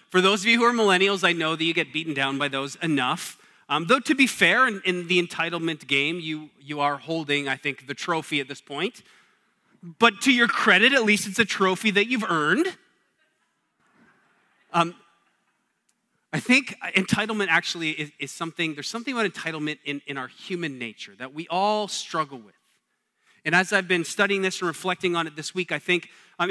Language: English